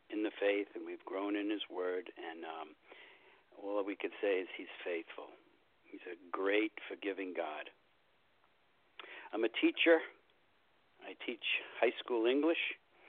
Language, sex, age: English, male, 60-79